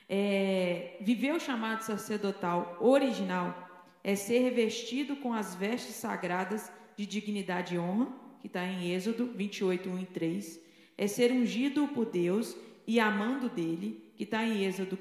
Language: Portuguese